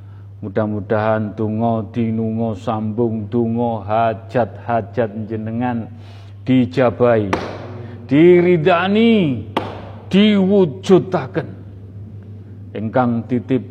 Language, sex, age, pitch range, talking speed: Indonesian, male, 40-59, 105-130 Hz, 55 wpm